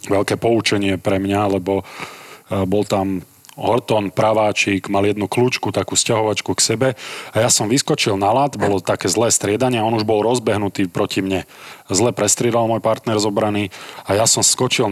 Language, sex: Slovak, male